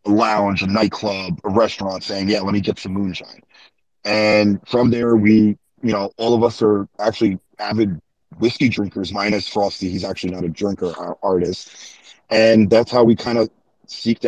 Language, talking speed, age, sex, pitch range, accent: English, 180 wpm, 30-49, male, 100-115 Hz, American